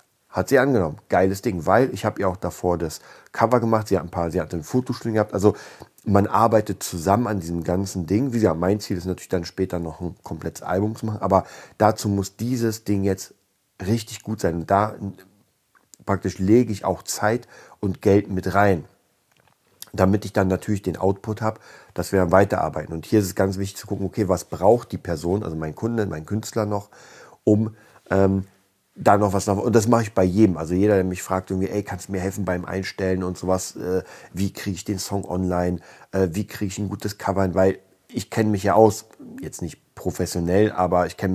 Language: German